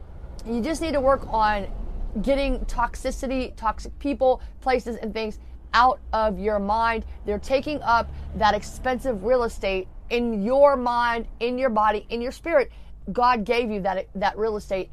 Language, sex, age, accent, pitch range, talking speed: English, female, 30-49, American, 200-255 Hz, 160 wpm